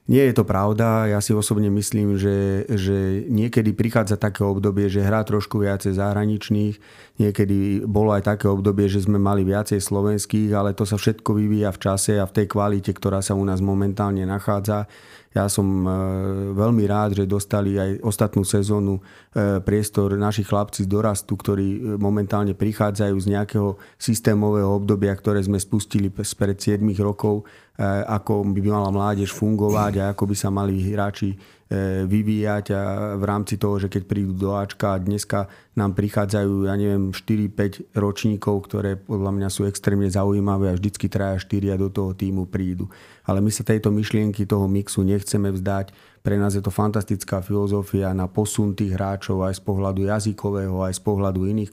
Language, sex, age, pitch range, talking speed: Slovak, male, 30-49, 100-105 Hz, 165 wpm